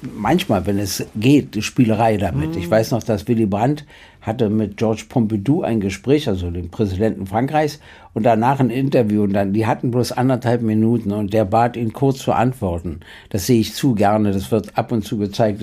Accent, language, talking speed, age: German, German, 195 wpm, 60-79